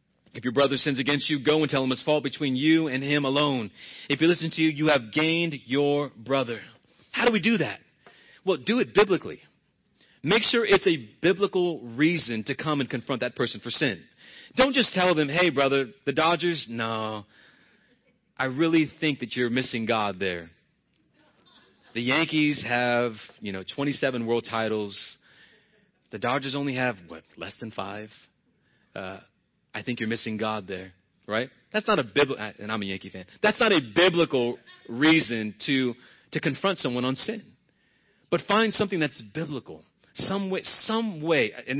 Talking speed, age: 175 wpm, 30-49